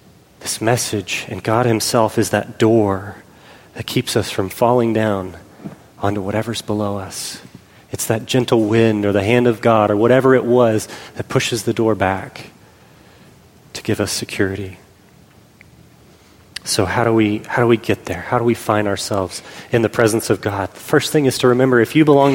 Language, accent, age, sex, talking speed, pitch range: English, American, 30-49, male, 185 wpm, 105-135 Hz